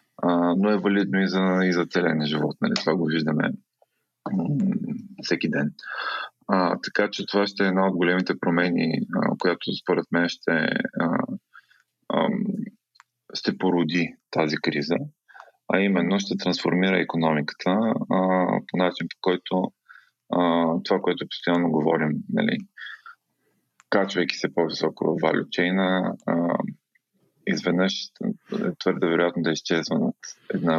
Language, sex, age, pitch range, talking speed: Bulgarian, male, 20-39, 80-95 Hz, 125 wpm